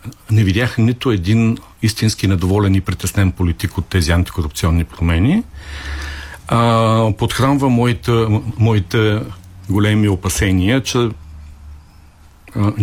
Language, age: Bulgarian, 50-69